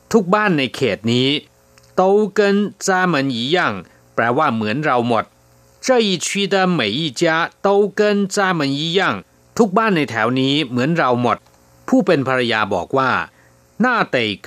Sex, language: male, Thai